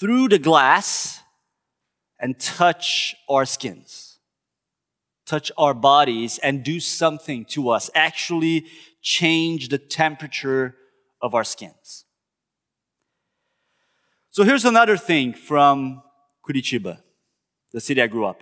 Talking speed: 110 wpm